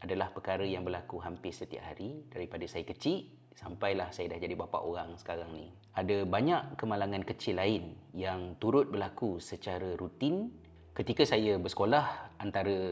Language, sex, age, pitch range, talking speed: Malay, male, 30-49, 90-105 Hz, 150 wpm